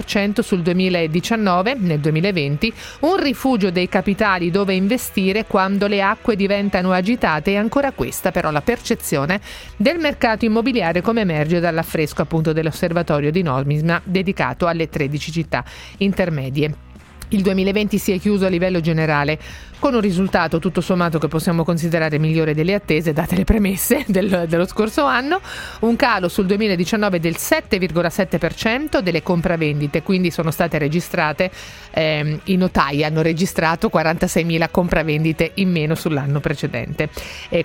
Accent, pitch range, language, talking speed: native, 160-205 Hz, Italian, 135 wpm